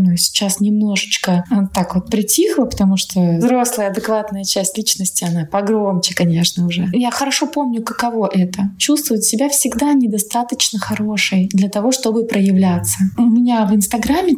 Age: 20-39